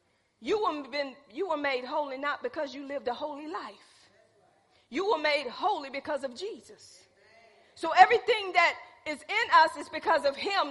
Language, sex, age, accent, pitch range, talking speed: English, female, 40-59, American, 280-365 Hz, 165 wpm